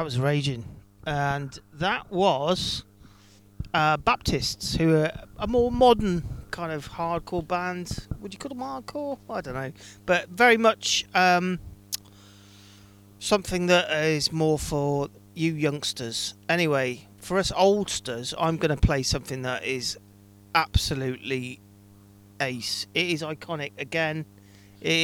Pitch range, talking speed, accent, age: 100-170 Hz, 125 wpm, British, 40-59